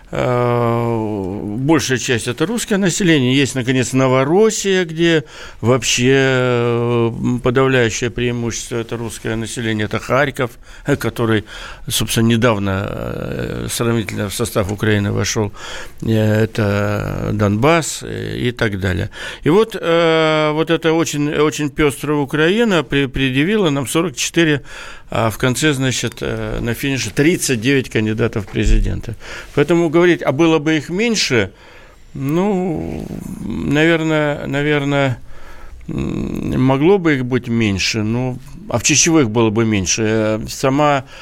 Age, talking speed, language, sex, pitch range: 60-79, 105 wpm, Russian, male, 115-150 Hz